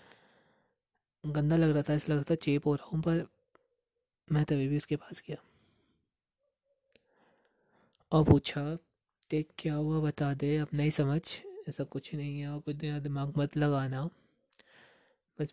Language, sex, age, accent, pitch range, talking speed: Hindi, male, 20-39, native, 145-160 Hz, 150 wpm